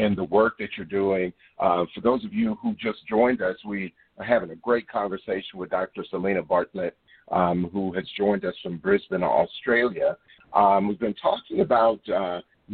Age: 50-69